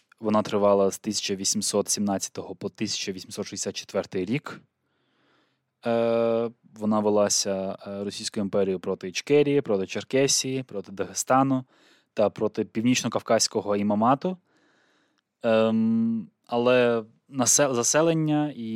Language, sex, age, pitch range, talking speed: Ukrainian, male, 20-39, 100-125 Hz, 75 wpm